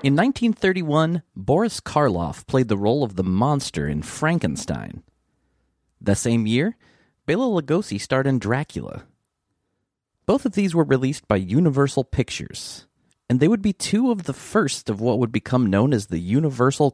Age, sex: 30-49, male